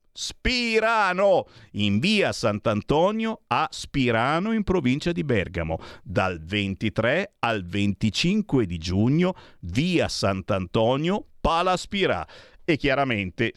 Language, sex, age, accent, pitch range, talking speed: Italian, male, 50-69, native, 100-165 Hz, 95 wpm